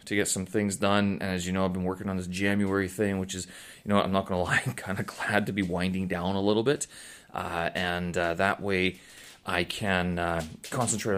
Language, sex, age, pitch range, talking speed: English, male, 30-49, 95-110 Hz, 235 wpm